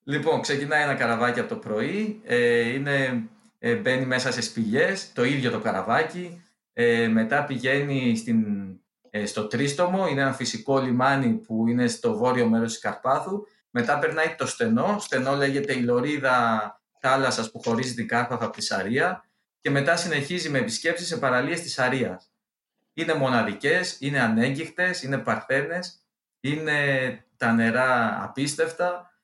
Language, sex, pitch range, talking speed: Greek, male, 120-160 Hz, 145 wpm